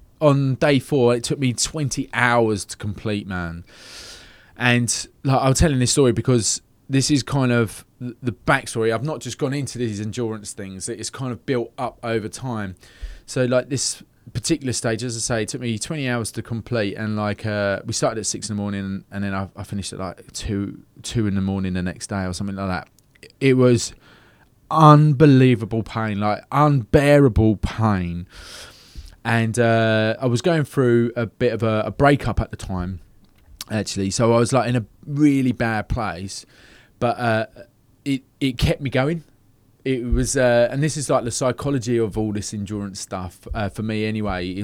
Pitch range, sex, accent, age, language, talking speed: 100-125 Hz, male, British, 20-39, English, 190 wpm